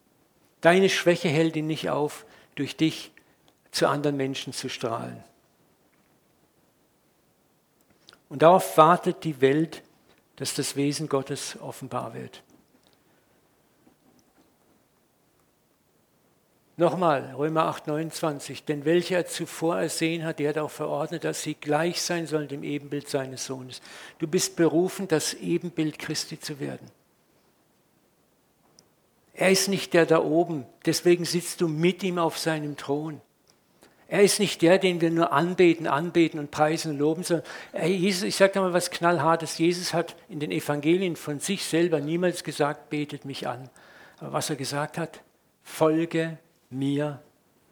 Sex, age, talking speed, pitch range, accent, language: male, 60-79, 135 wpm, 145-170 Hz, German, German